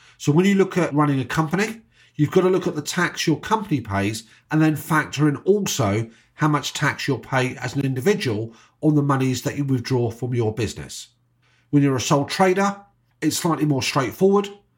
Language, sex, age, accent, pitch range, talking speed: English, male, 40-59, British, 130-170 Hz, 200 wpm